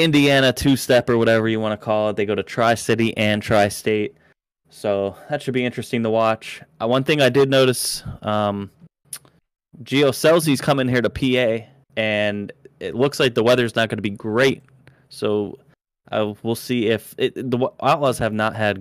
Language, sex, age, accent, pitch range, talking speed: English, male, 20-39, American, 100-115 Hz, 180 wpm